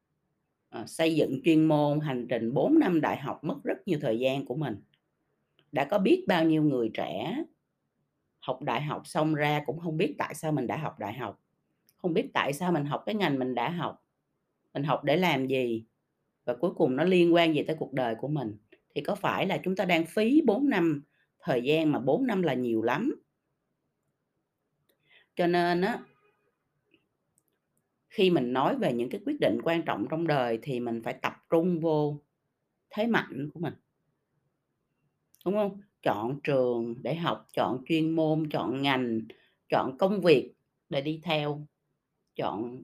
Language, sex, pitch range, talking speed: Vietnamese, female, 130-175 Hz, 180 wpm